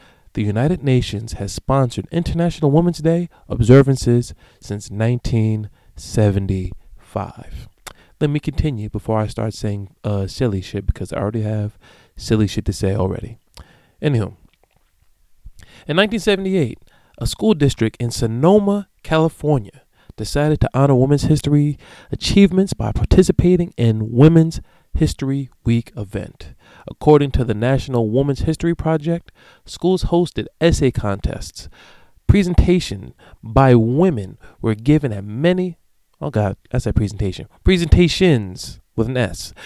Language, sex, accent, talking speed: English, male, American, 120 wpm